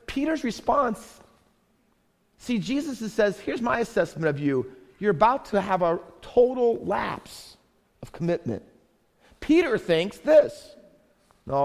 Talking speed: 120 wpm